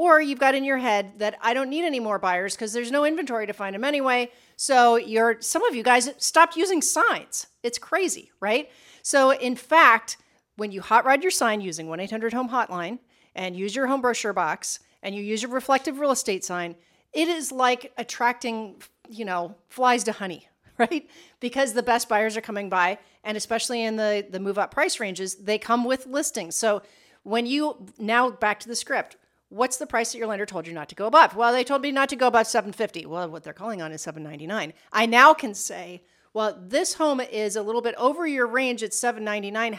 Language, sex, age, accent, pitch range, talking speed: English, female, 40-59, American, 205-260 Hz, 210 wpm